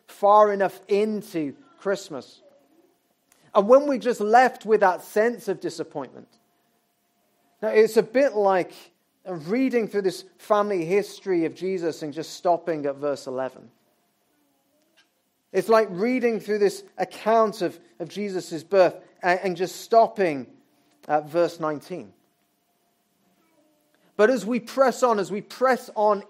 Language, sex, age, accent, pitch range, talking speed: English, male, 30-49, British, 170-215 Hz, 130 wpm